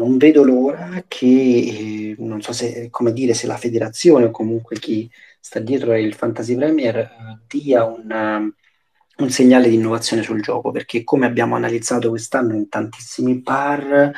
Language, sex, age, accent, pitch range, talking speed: Italian, male, 40-59, native, 110-125 Hz, 150 wpm